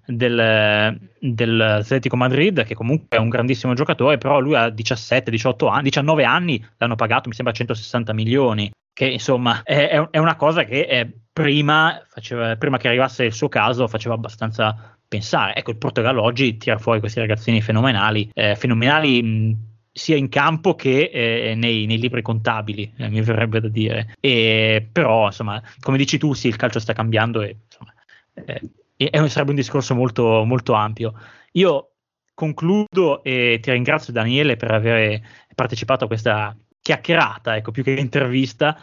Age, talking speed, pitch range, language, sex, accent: 20-39, 160 wpm, 115-145 Hz, Italian, male, native